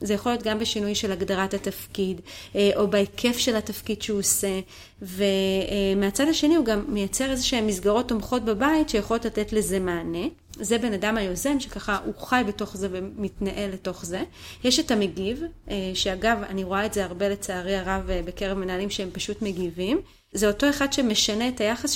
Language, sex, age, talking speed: Hebrew, female, 30-49, 165 wpm